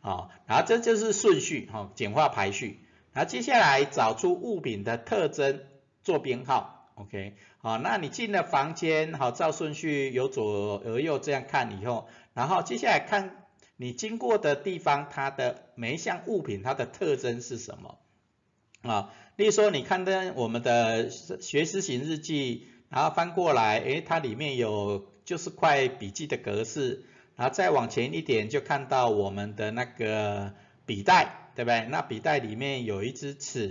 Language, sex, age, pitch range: Chinese, male, 50-69, 115-175 Hz